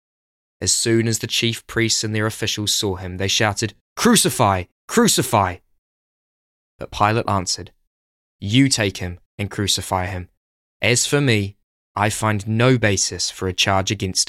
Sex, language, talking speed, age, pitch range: male, English, 145 wpm, 20-39, 90-115 Hz